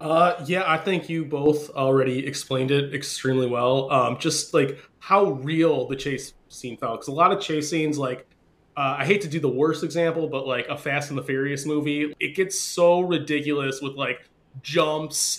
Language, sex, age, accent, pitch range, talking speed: English, male, 20-39, American, 130-160 Hz, 195 wpm